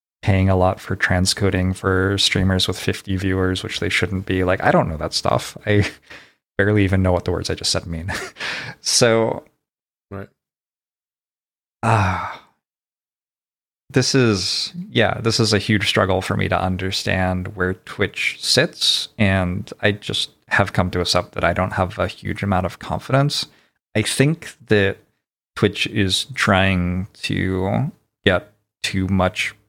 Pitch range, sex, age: 90-105 Hz, male, 20-39